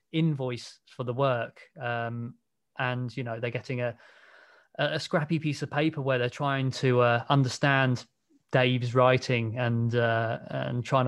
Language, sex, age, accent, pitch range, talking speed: English, male, 20-39, British, 120-145 Hz, 150 wpm